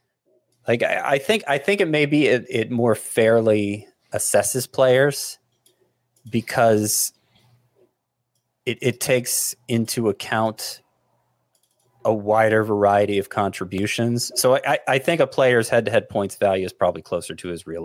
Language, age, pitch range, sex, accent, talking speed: English, 30-49, 100-125 Hz, male, American, 140 wpm